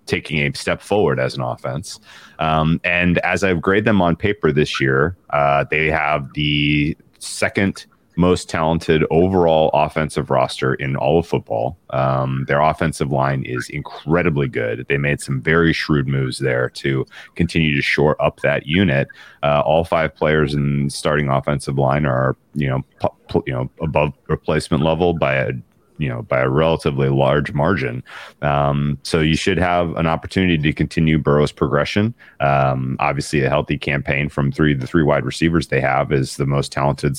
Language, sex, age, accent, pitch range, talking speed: English, male, 30-49, American, 70-85 Hz, 170 wpm